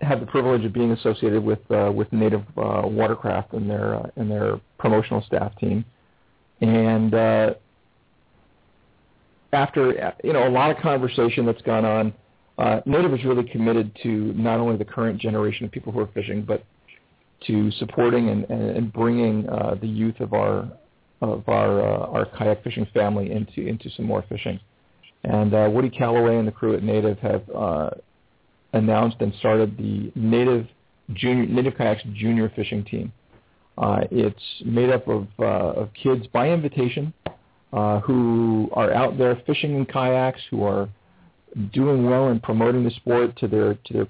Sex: male